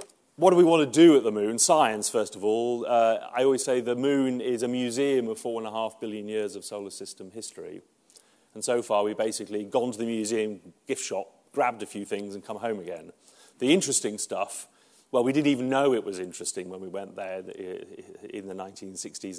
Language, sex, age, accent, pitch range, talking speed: English, male, 40-59, British, 105-130 Hz, 205 wpm